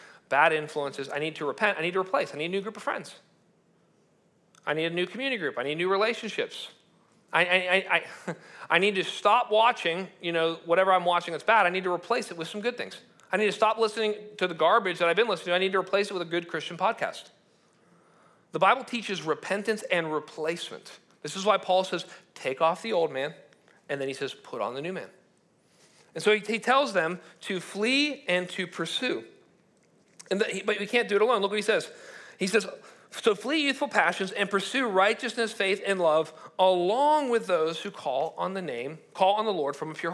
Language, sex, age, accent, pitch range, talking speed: English, male, 40-59, American, 170-230 Hz, 220 wpm